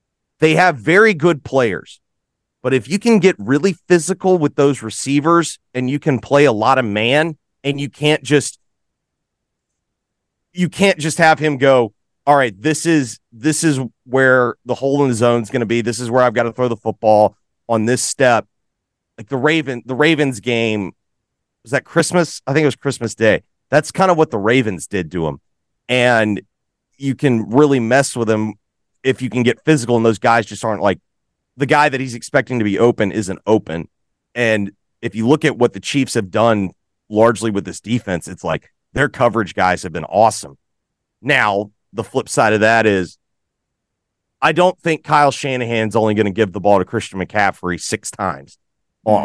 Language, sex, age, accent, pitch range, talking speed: English, male, 30-49, American, 105-145 Hz, 195 wpm